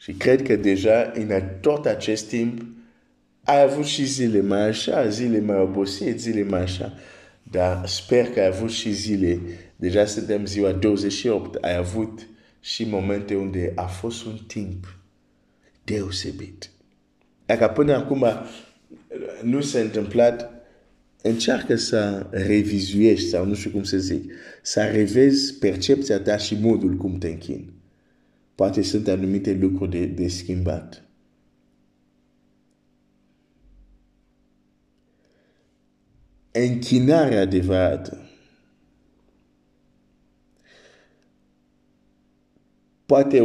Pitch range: 95-115 Hz